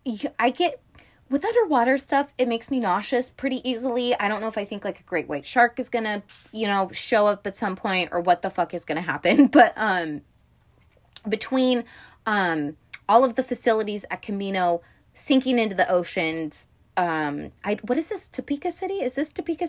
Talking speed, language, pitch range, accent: 190 wpm, English, 165-230 Hz, American